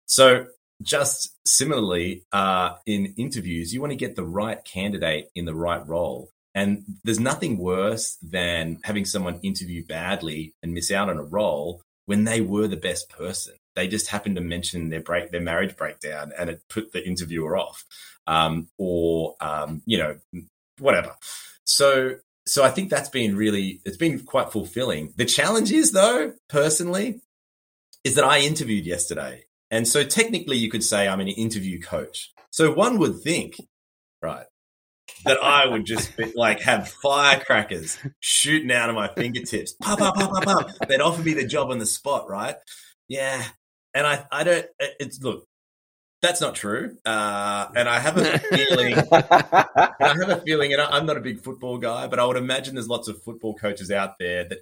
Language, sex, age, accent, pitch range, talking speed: English, male, 30-49, Australian, 90-135 Hz, 170 wpm